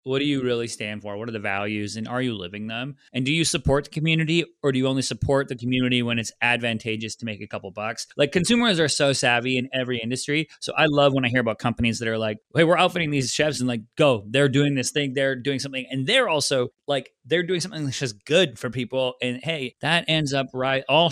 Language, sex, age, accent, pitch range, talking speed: English, male, 20-39, American, 120-145 Hz, 255 wpm